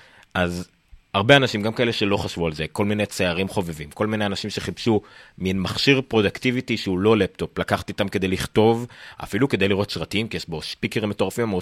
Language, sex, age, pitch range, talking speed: Hebrew, male, 30-49, 90-110 Hz, 190 wpm